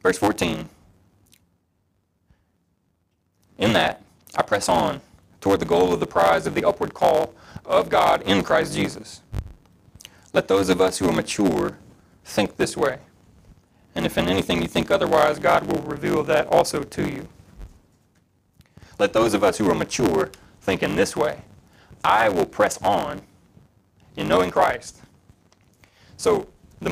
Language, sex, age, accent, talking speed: English, male, 30-49, American, 145 wpm